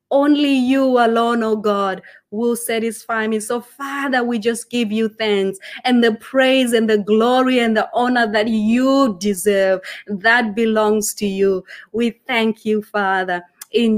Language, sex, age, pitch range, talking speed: English, female, 30-49, 215-255 Hz, 160 wpm